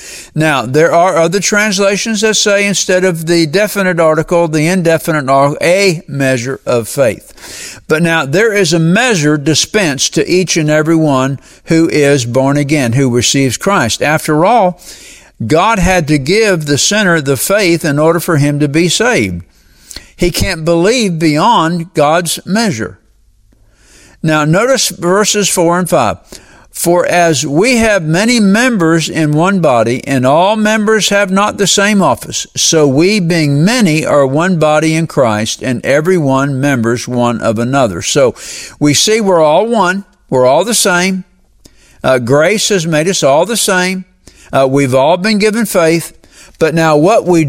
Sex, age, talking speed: male, 60-79, 160 wpm